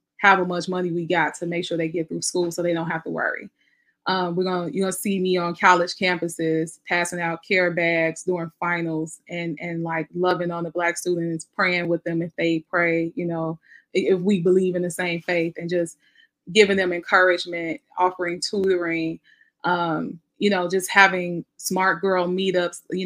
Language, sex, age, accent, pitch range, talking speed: English, female, 20-39, American, 170-185 Hz, 190 wpm